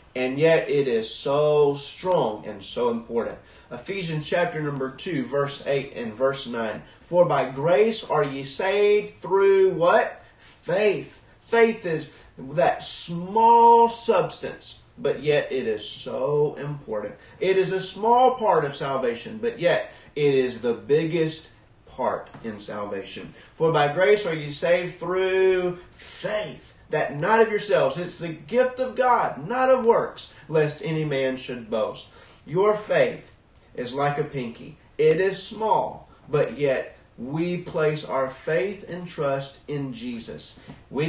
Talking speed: 145 wpm